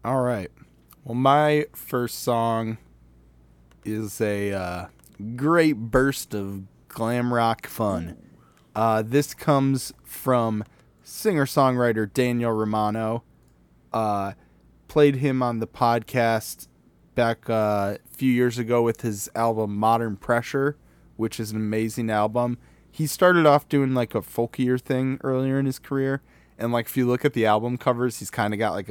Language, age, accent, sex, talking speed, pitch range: English, 20-39, American, male, 145 wpm, 100-125 Hz